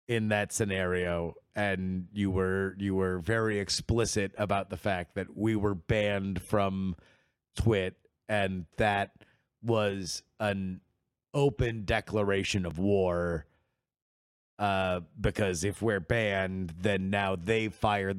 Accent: American